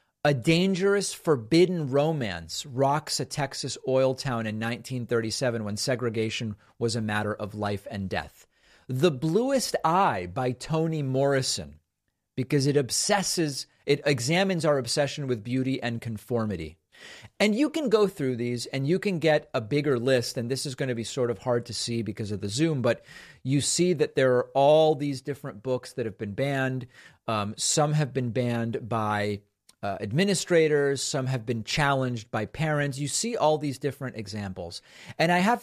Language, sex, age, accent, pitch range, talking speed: English, male, 40-59, American, 115-150 Hz, 170 wpm